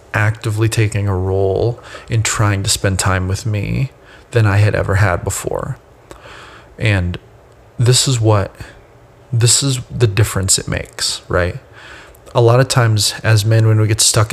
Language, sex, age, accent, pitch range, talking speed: English, male, 30-49, American, 100-115 Hz, 160 wpm